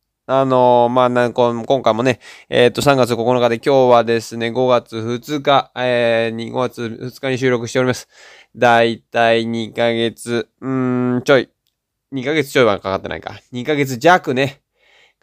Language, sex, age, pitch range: Japanese, male, 20-39, 120-155 Hz